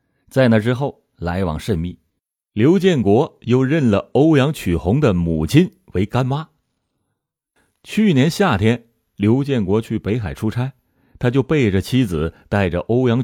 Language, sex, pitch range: Chinese, male, 90-130 Hz